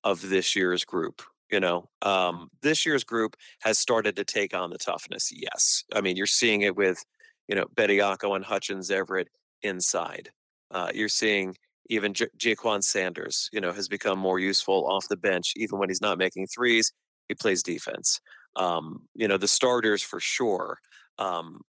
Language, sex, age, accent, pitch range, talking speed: English, male, 30-49, American, 95-110 Hz, 175 wpm